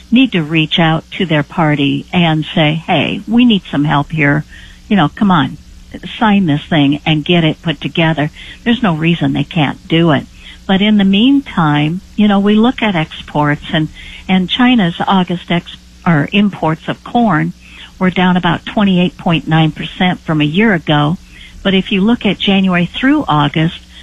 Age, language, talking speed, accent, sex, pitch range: 60-79, English, 170 wpm, American, female, 160-200 Hz